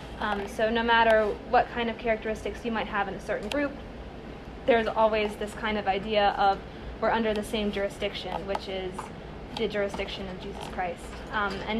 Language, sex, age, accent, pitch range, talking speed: English, female, 20-39, American, 200-230 Hz, 185 wpm